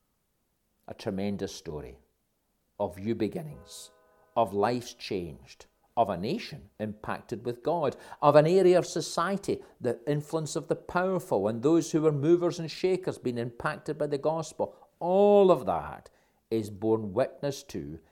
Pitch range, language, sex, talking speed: 105-145 Hz, English, male, 145 wpm